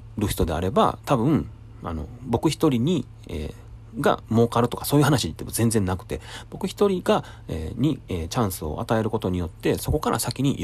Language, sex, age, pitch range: Japanese, male, 40-59, 95-120 Hz